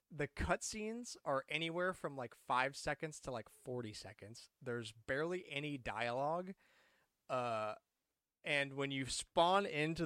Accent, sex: American, male